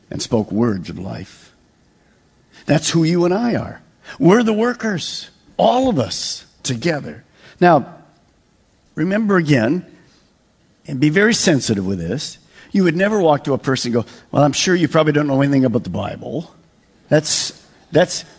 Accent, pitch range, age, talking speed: American, 140-220 Hz, 50-69, 155 wpm